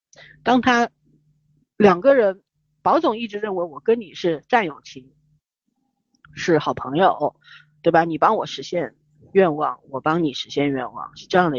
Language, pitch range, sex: Chinese, 150-220 Hz, female